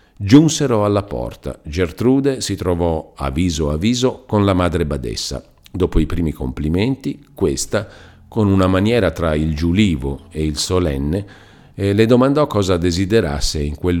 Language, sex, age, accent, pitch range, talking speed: Italian, male, 50-69, native, 75-100 Hz, 140 wpm